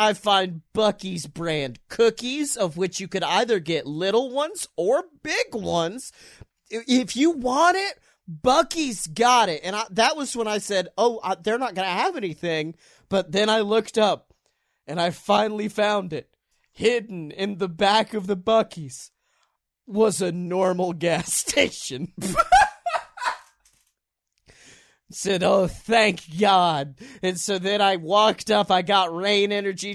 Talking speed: 145 wpm